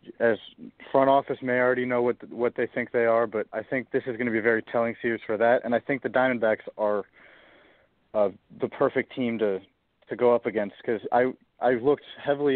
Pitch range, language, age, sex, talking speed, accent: 115-130 Hz, English, 30-49, male, 225 wpm, American